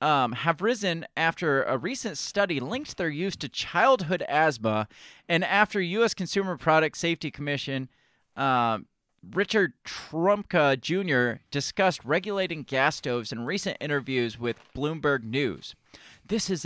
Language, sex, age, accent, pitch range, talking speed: English, male, 30-49, American, 135-185 Hz, 130 wpm